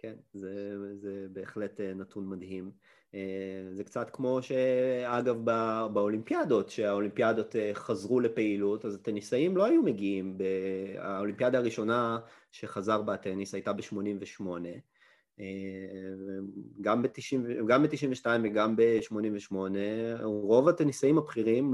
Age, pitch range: 30-49, 105-150 Hz